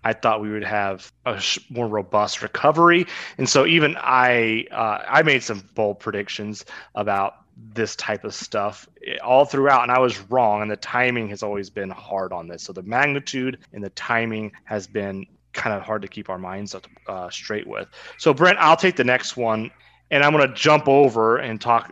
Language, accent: English, American